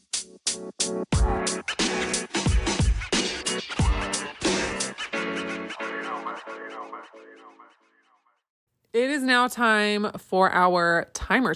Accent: American